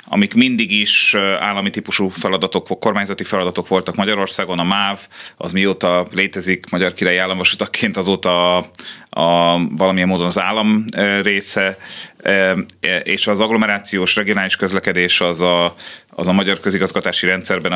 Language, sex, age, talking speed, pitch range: Hungarian, male, 30-49, 120 wpm, 85-100 Hz